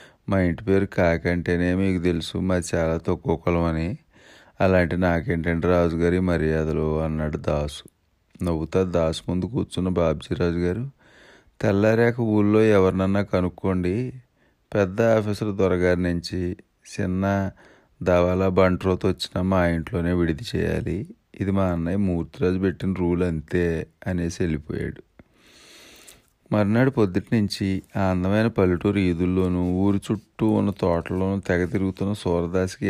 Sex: male